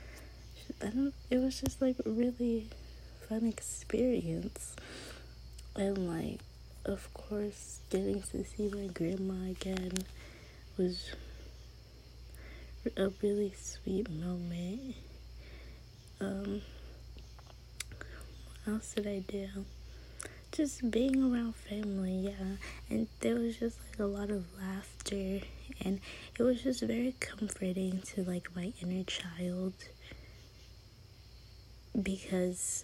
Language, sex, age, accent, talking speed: English, female, 20-39, American, 100 wpm